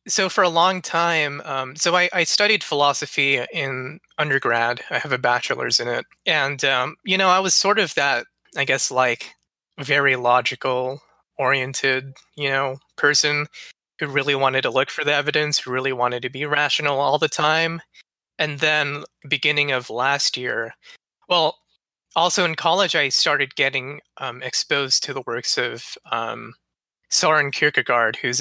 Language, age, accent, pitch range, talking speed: English, 20-39, American, 125-155 Hz, 160 wpm